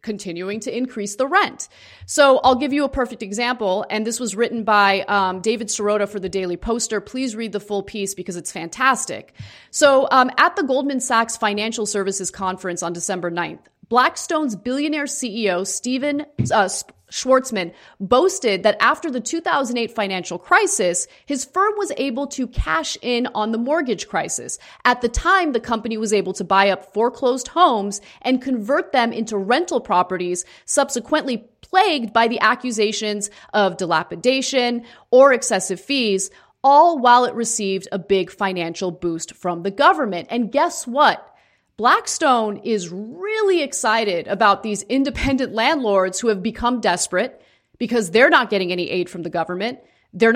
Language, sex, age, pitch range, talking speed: English, female, 30-49, 195-265 Hz, 155 wpm